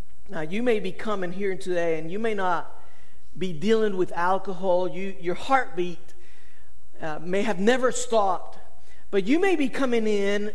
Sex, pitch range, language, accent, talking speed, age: male, 185-230 Hz, English, American, 160 wpm, 50-69